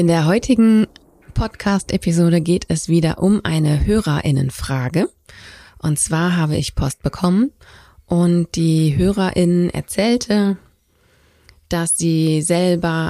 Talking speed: 105 wpm